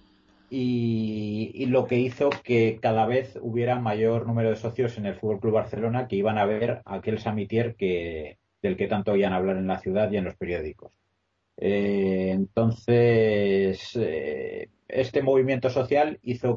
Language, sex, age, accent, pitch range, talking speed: Spanish, male, 30-49, Spanish, 100-120 Hz, 165 wpm